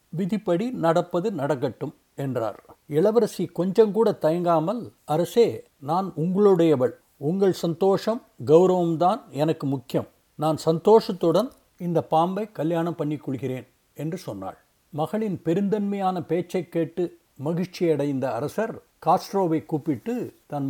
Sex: male